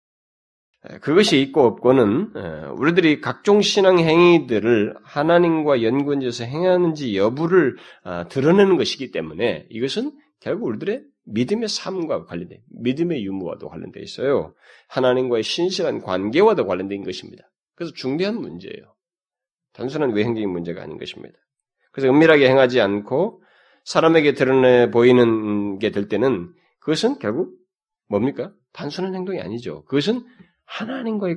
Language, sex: Korean, male